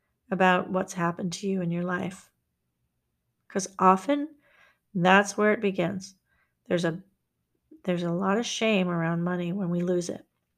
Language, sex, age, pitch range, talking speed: English, female, 40-59, 175-195 Hz, 155 wpm